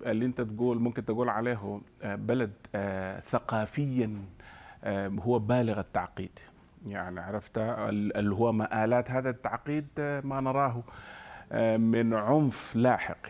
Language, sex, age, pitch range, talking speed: Arabic, male, 40-59, 105-125 Hz, 105 wpm